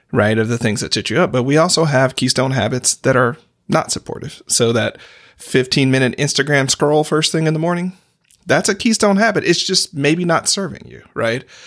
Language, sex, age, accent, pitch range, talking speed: English, male, 40-59, American, 120-160 Hz, 200 wpm